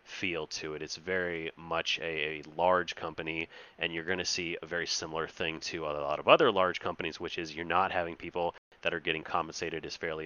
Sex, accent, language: male, American, English